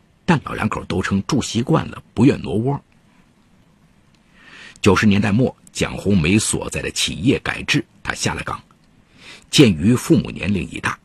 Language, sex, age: Chinese, male, 50-69